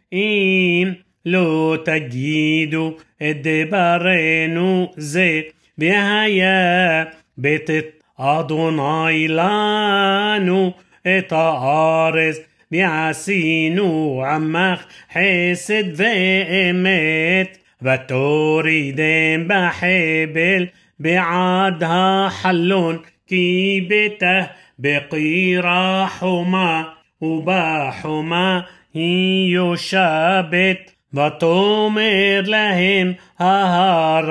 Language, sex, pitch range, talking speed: Hebrew, male, 160-185 Hz, 45 wpm